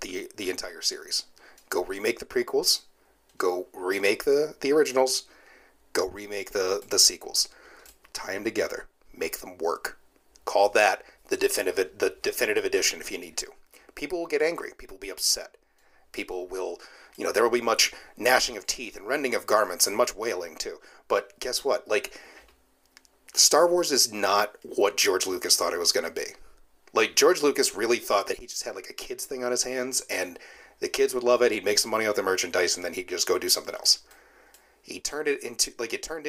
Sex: male